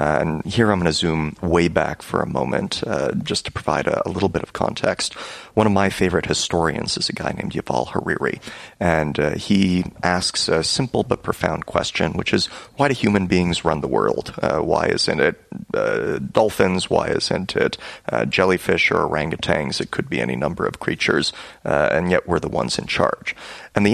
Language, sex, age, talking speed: English, male, 30-49, 200 wpm